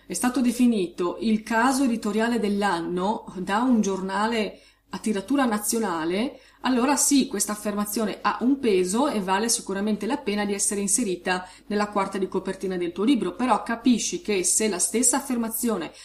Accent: native